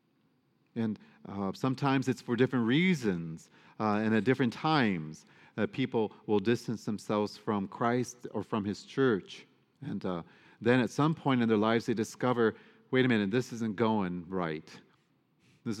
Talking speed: 160 wpm